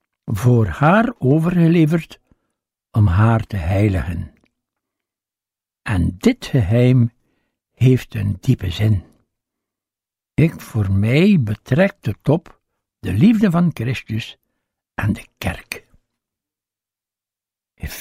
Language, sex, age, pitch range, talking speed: Dutch, male, 60-79, 105-155 Hz, 95 wpm